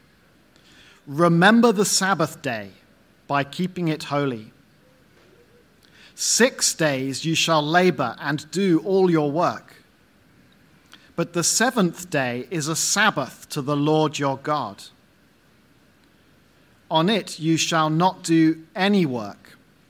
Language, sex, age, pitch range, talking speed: English, male, 40-59, 140-175 Hz, 115 wpm